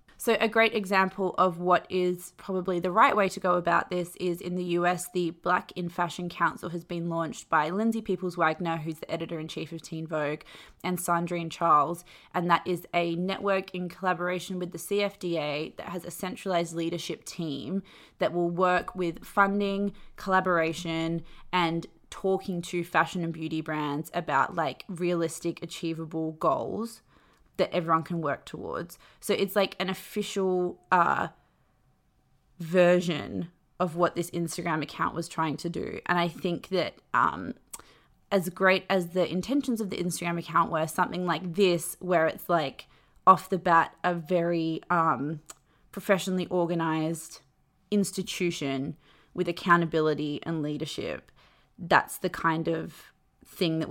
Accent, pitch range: Australian, 165-185 Hz